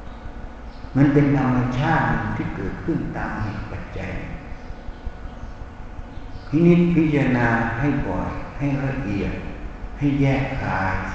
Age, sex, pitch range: 60-79, male, 105-155 Hz